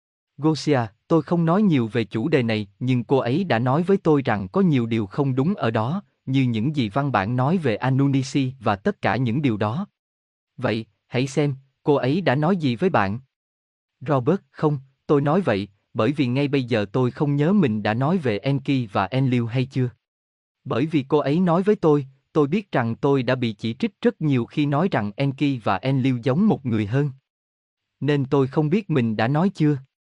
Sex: male